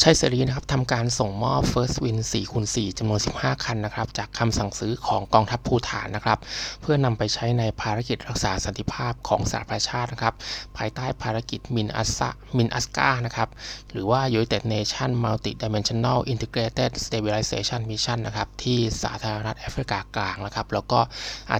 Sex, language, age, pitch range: male, Thai, 20-39, 105-120 Hz